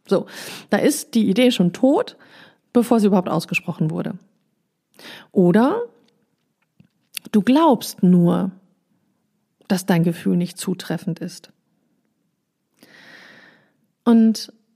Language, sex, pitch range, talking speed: German, female, 195-240 Hz, 95 wpm